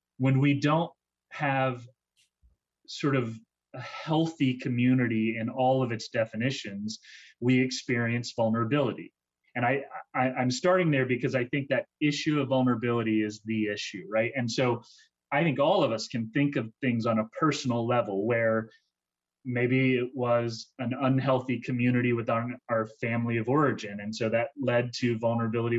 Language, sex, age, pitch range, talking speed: English, male, 30-49, 110-130 Hz, 160 wpm